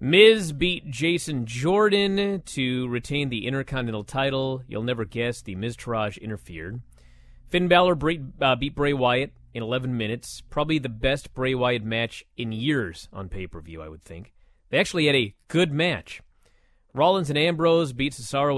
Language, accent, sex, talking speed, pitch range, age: English, American, male, 150 wpm, 115-155 Hz, 30-49